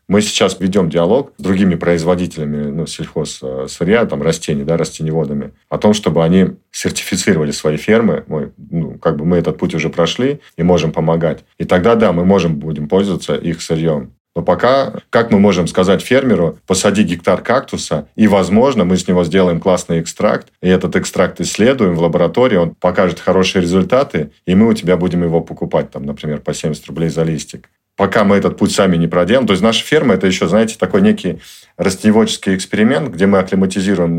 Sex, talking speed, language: male, 185 wpm, Russian